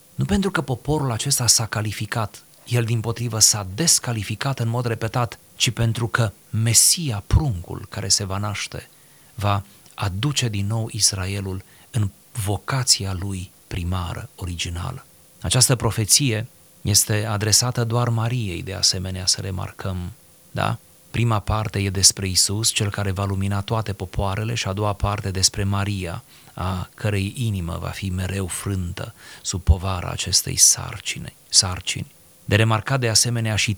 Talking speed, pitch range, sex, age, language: 135 wpm, 95-115 Hz, male, 30-49, Romanian